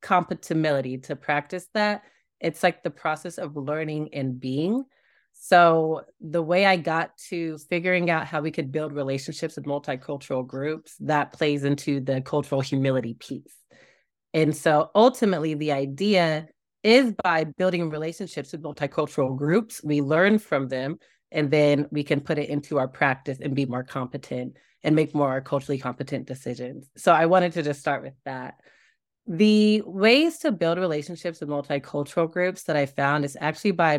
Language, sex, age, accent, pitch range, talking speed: English, female, 30-49, American, 140-175 Hz, 160 wpm